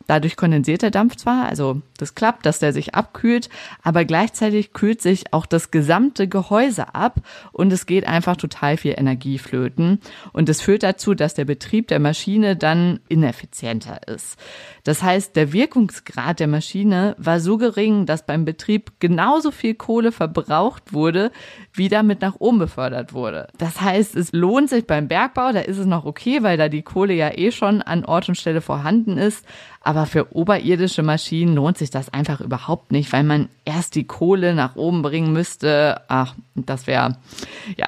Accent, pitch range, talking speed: German, 150-205 Hz, 175 wpm